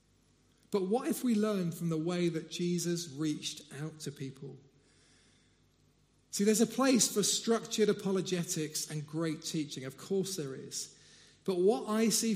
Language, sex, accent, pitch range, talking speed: English, male, British, 150-200 Hz, 155 wpm